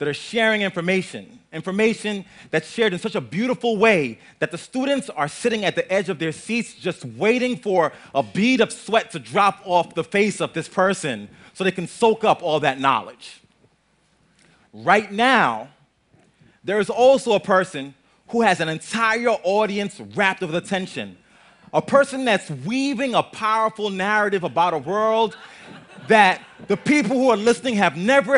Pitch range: 185-235 Hz